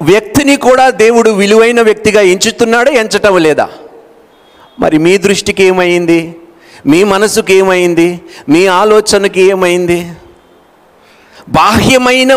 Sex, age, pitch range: male, 50-69, 175-220 Hz